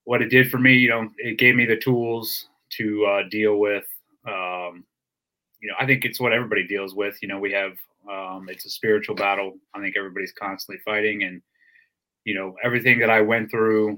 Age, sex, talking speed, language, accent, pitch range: 20-39, male, 205 wpm, English, American, 100-115 Hz